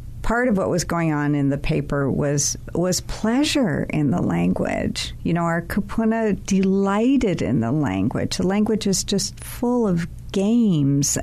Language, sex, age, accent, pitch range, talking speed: English, female, 60-79, American, 140-200 Hz, 160 wpm